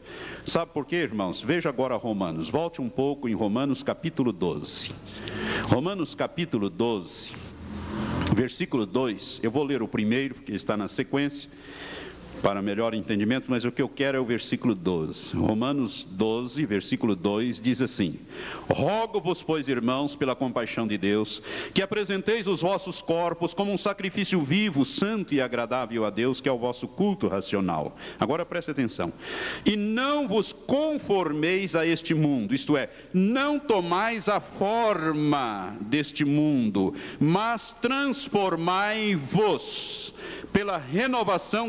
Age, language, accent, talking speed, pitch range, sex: 60-79, Portuguese, Brazilian, 135 wpm, 125-195 Hz, male